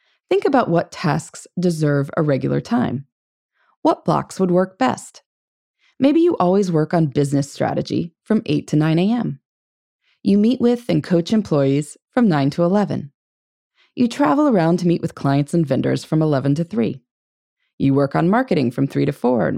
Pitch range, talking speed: 145-205 Hz, 175 wpm